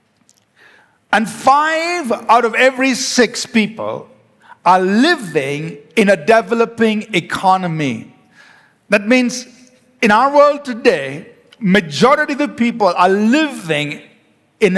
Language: English